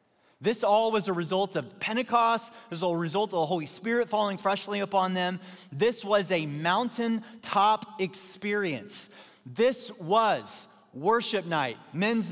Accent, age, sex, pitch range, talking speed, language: American, 30-49, male, 155-205 Hz, 140 wpm, English